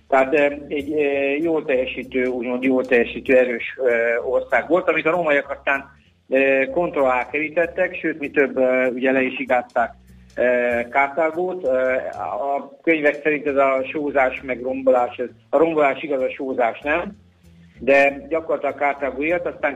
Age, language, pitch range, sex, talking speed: 50-69, Hungarian, 125-145 Hz, male, 120 wpm